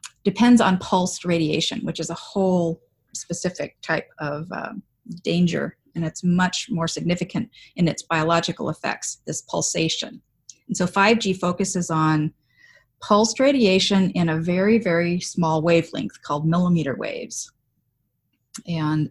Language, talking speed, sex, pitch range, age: English, 130 wpm, female, 155-185 Hz, 40-59